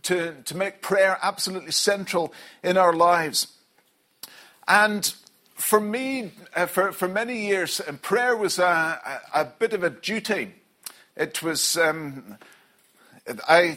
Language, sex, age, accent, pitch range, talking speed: English, male, 50-69, British, 160-195 Hz, 130 wpm